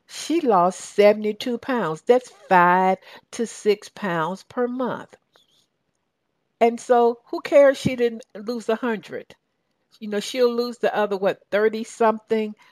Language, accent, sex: English, American, female